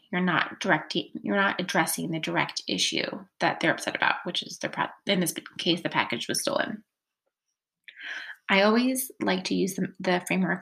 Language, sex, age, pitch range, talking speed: English, female, 20-39, 170-210 Hz, 175 wpm